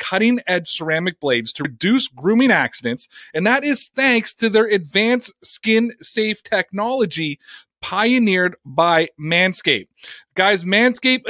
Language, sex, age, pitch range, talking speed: English, male, 30-49, 185-230 Hz, 110 wpm